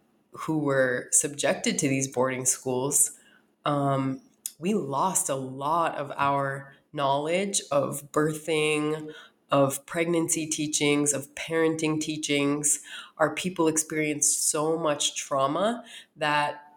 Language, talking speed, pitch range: English, 105 wpm, 140-155 Hz